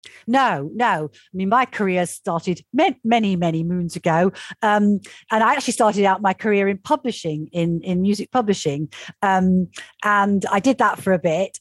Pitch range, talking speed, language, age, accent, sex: 175-215 Hz, 170 wpm, English, 50-69, British, female